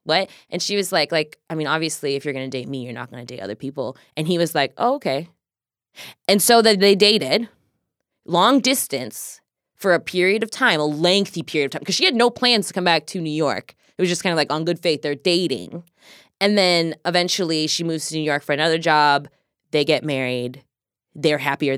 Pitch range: 145-200 Hz